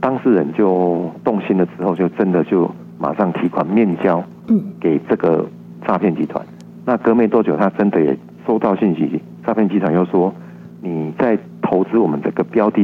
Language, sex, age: Chinese, male, 50-69